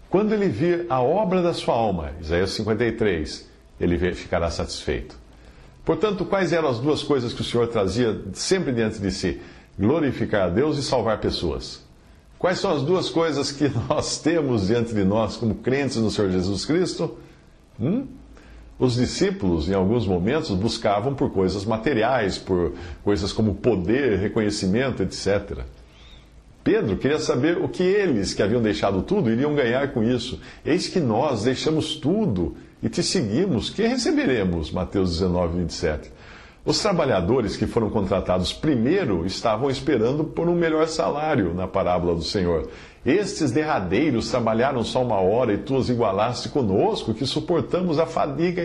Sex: male